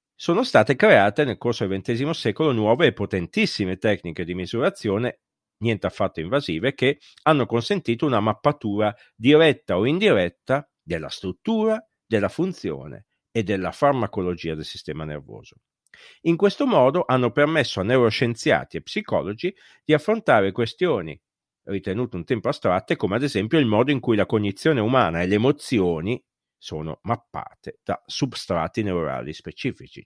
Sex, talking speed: male, 140 wpm